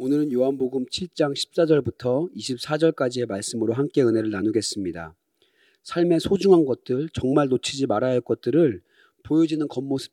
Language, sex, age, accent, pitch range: Korean, male, 40-59, native, 125-165 Hz